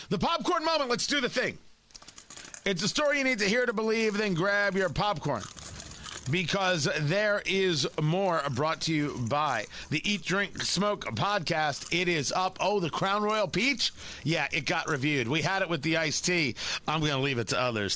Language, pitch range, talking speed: English, 125-185 Hz, 195 wpm